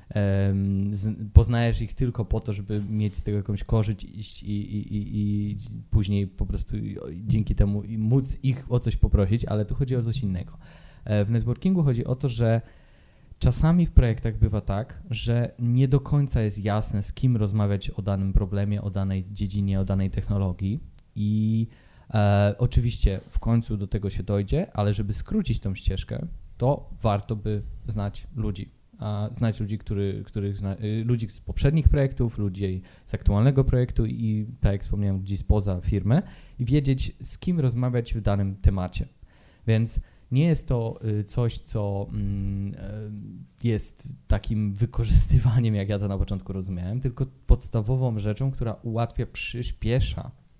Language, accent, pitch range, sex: Polish, native, 100-120 Hz, male